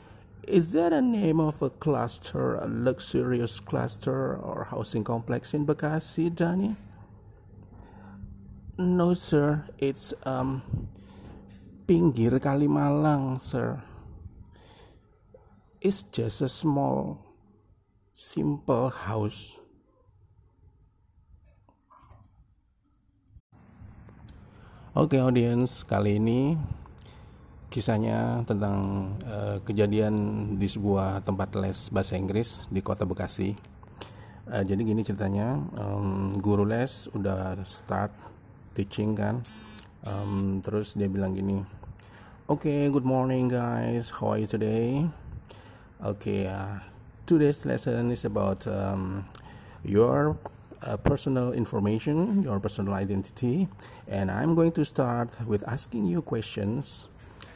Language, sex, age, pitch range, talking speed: Indonesian, male, 50-69, 100-130 Hz, 100 wpm